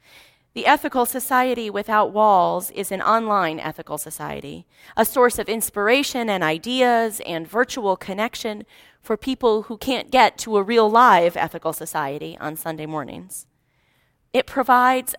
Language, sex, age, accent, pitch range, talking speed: English, female, 30-49, American, 165-235 Hz, 140 wpm